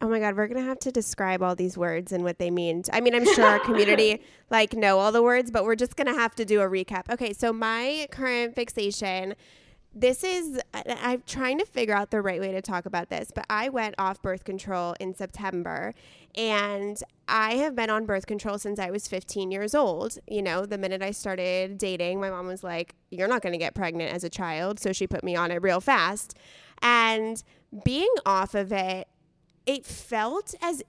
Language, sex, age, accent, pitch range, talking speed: English, female, 20-39, American, 185-240 Hz, 220 wpm